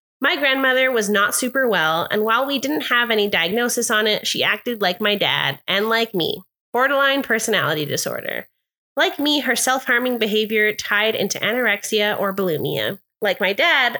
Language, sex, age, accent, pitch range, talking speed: English, female, 20-39, American, 195-245 Hz, 165 wpm